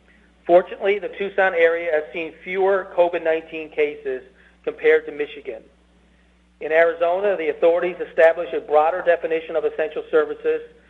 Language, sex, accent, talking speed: English, male, American, 125 wpm